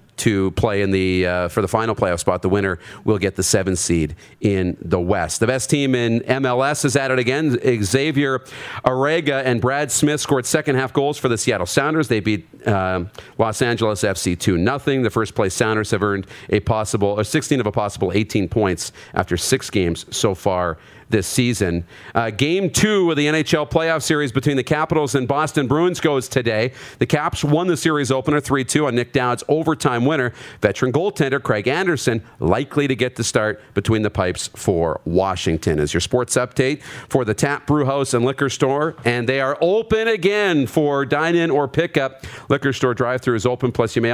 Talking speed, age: 195 wpm, 40-59